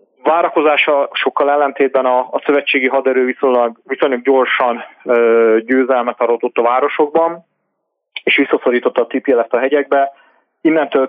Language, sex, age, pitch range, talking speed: Hungarian, male, 30-49, 115-135 Hz, 115 wpm